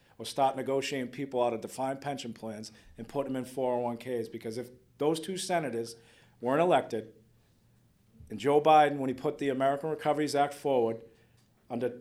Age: 40-59